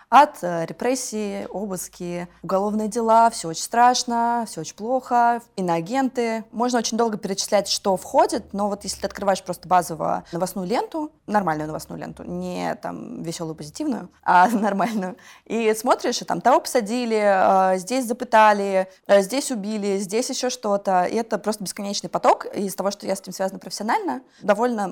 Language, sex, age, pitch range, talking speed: Russian, female, 20-39, 175-225 Hz, 150 wpm